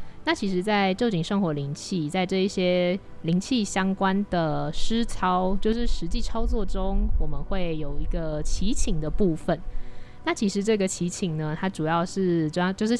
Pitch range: 165-200 Hz